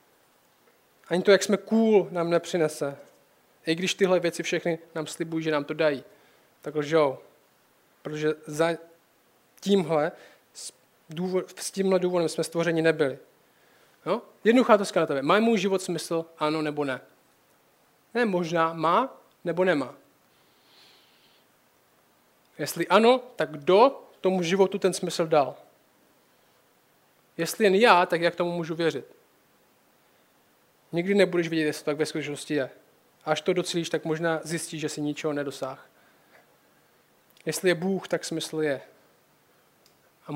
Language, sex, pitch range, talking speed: Czech, male, 155-185 Hz, 135 wpm